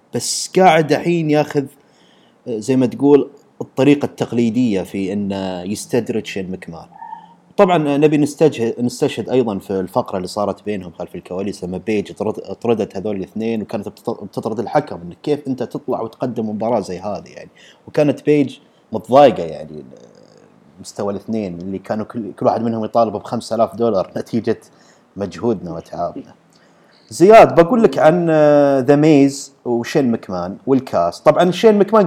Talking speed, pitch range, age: 135 wpm, 105-145 Hz, 30-49